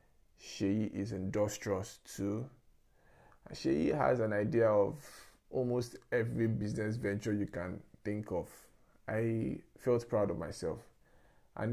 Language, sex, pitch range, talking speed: English, male, 100-125 Hz, 120 wpm